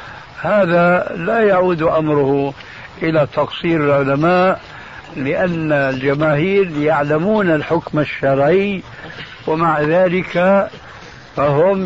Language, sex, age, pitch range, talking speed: Arabic, male, 60-79, 135-175 Hz, 75 wpm